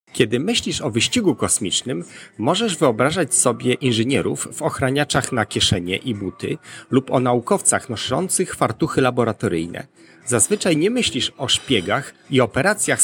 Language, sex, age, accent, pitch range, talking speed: Polish, male, 40-59, native, 110-150 Hz, 130 wpm